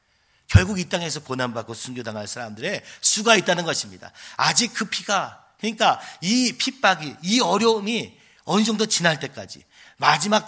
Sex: male